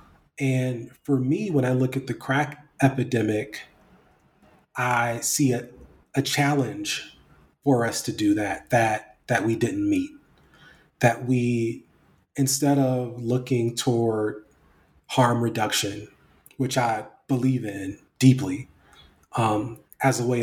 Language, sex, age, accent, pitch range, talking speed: English, male, 30-49, American, 115-135 Hz, 125 wpm